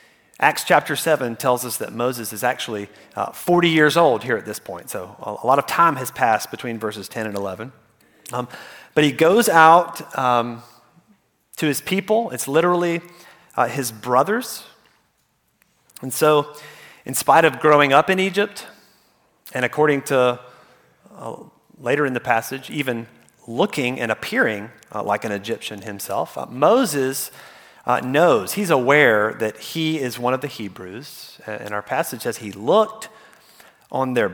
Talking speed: 155 wpm